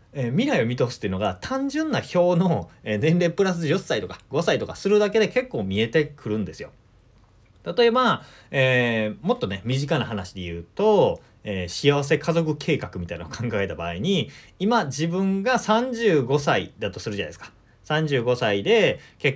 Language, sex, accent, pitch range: Japanese, male, native, 110-185 Hz